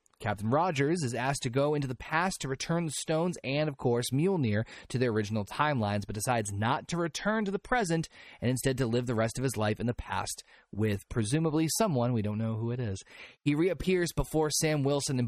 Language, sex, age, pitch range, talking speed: English, male, 30-49, 110-145 Hz, 220 wpm